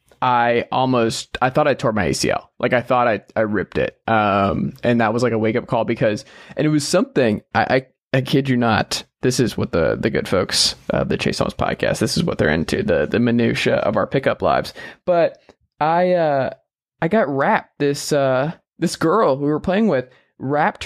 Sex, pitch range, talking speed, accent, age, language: male, 120-165 Hz, 200 wpm, American, 20-39, English